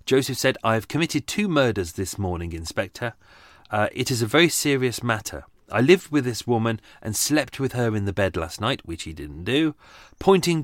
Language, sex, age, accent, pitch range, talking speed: English, male, 30-49, British, 95-135 Hz, 205 wpm